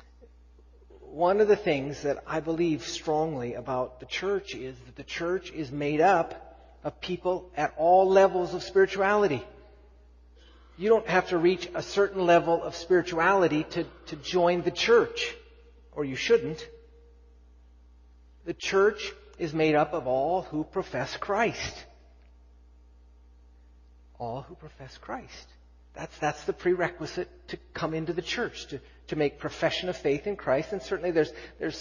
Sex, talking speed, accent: male, 145 wpm, American